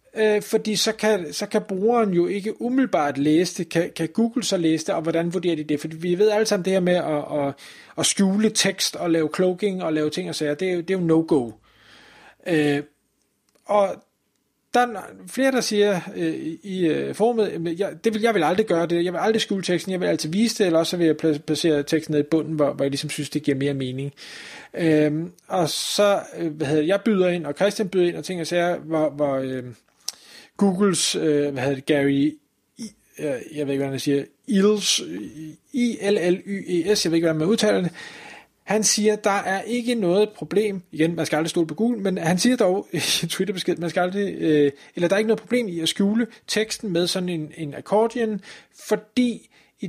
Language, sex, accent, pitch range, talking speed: Danish, male, native, 155-210 Hz, 210 wpm